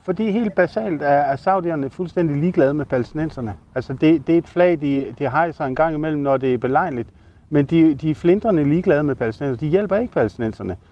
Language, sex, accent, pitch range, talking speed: Danish, male, native, 125-165 Hz, 200 wpm